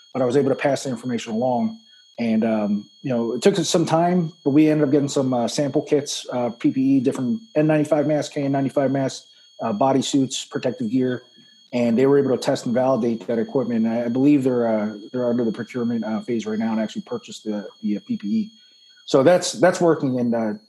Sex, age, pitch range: male, 30-49, 120-180 Hz